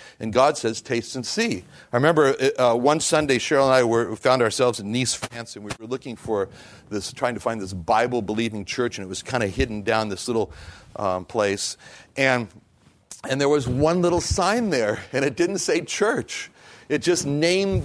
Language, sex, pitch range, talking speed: English, male, 105-145 Hz, 200 wpm